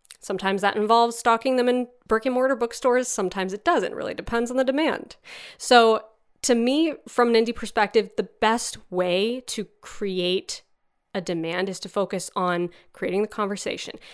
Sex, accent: female, American